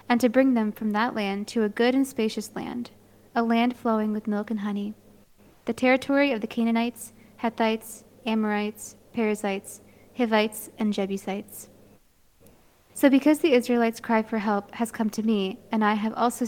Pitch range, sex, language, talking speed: 210-240 Hz, female, English, 170 wpm